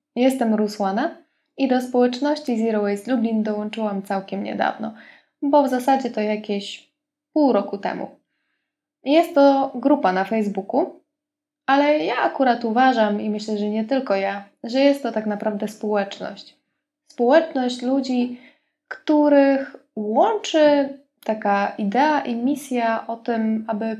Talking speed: 130 wpm